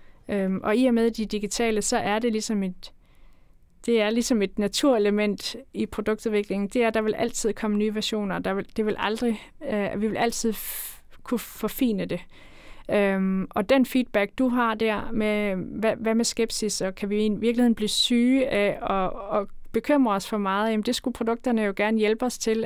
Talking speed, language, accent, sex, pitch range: 200 wpm, Danish, native, female, 195-225 Hz